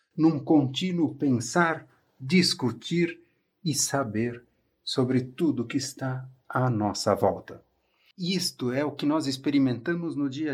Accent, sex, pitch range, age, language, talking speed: Brazilian, male, 120-160 Hz, 50-69, Portuguese, 120 wpm